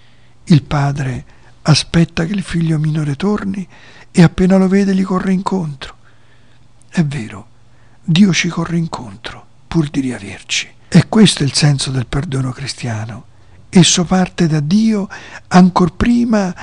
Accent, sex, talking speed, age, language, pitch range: native, male, 135 wpm, 60-79, Italian, 120-180 Hz